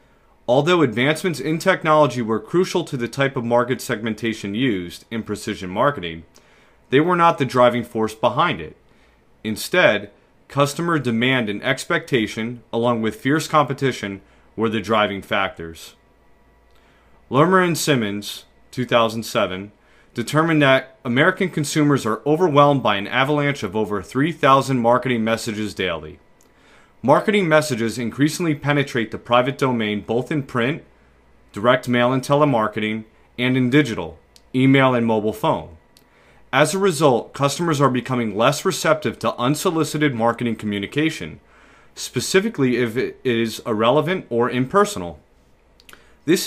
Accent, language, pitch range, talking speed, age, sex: American, English, 110-145 Hz, 125 wpm, 30-49, male